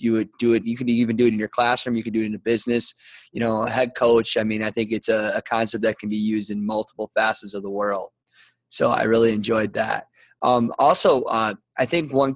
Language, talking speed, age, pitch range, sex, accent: English, 250 wpm, 20-39, 110-120 Hz, male, American